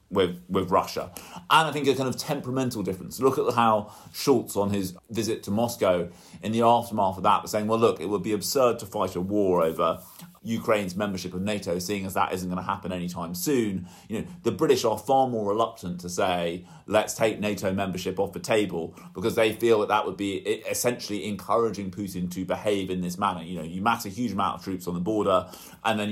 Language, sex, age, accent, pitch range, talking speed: English, male, 30-49, British, 95-120 Hz, 225 wpm